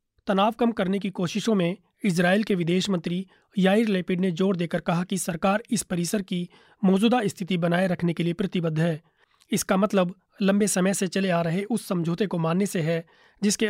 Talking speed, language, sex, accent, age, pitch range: 190 wpm, Hindi, male, native, 30-49, 170-200 Hz